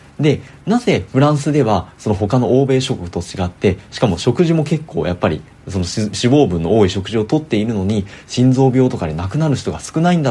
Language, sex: Japanese, male